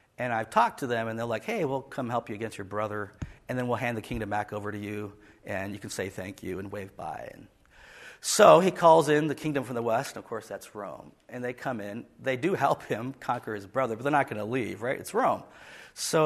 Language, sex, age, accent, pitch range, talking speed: English, male, 50-69, American, 110-140 Hz, 260 wpm